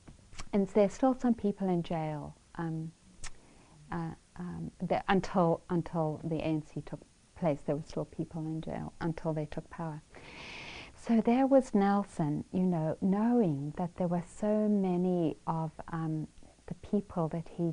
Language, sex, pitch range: English, female, 155-190 Hz